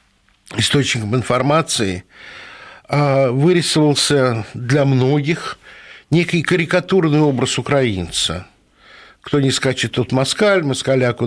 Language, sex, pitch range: Russian, male, 120-155 Hz